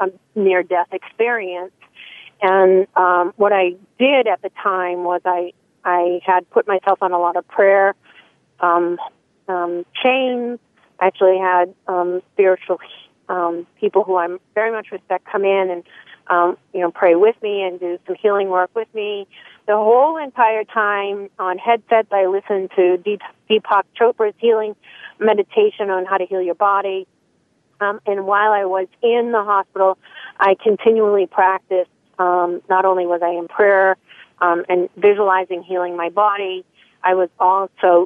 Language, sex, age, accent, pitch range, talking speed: English, female, 40-59, American, 180-210 Hz, 160 wpm